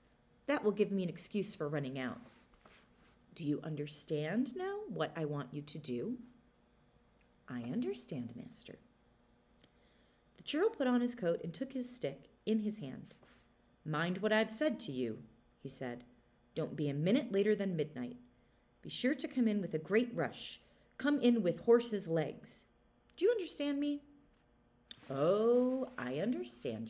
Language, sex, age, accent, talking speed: English, female, 30-49, American, 160 wpm